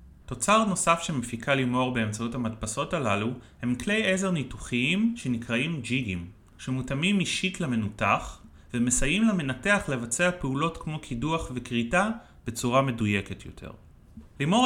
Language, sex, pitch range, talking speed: Hebrew, male, 110-145 Hz, 110 wpm